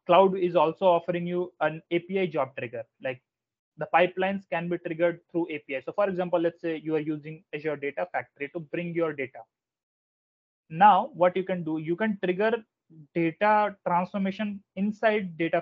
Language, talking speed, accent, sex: English, 170 wpm, Indian, male